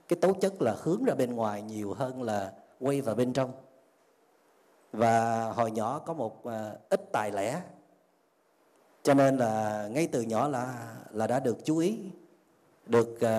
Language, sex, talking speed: Vietnamese, male, 155 wpm